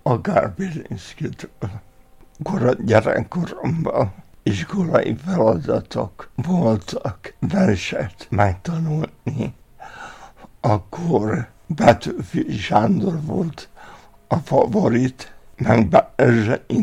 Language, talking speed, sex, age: Hungarian, 55 wpm, male, 60-79